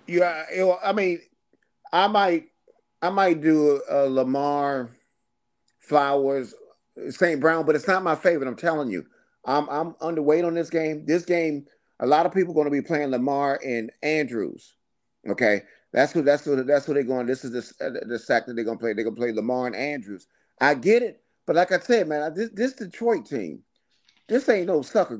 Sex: male